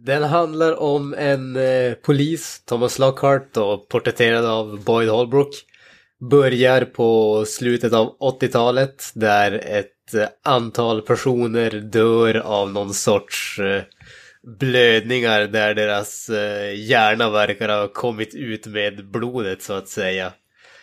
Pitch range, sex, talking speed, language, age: 100-125 Hz, male, 105 wpm, Swedish, 20-39